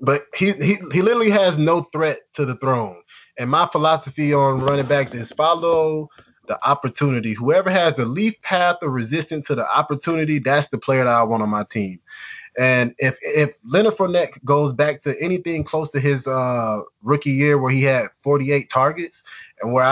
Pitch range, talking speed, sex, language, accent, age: 120-155 Hz, 185 wpm, male, English, American, 20-39